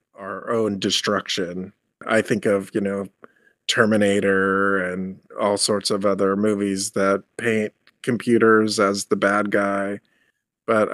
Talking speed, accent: 125 wpm, American